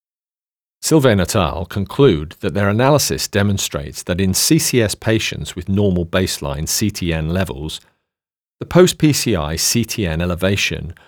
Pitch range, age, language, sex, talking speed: 85-110 Hz, 40-59, English, male, 115 wpm